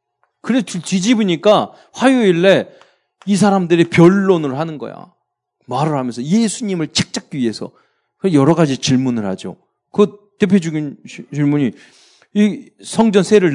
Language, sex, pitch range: Korean, male, 150-215 Hz